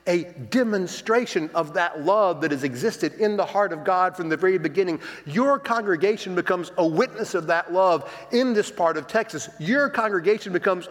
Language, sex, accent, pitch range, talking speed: English, male, American, 175-235 Hz, 180 wpm